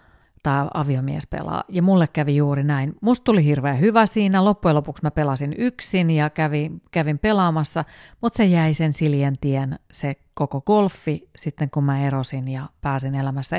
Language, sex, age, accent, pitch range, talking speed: Finnish, female, 30-49, native, 140-180 Hz, 165 wpm